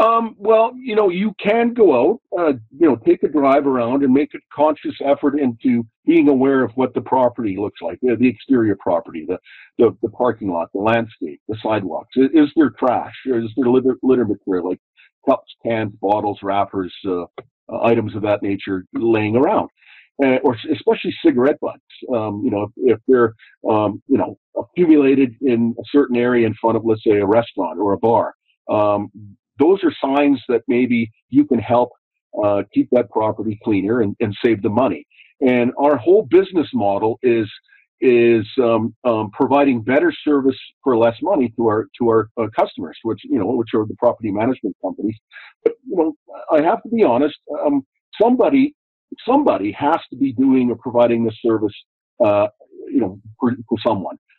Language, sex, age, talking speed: English, male, 50-69, 185 wpm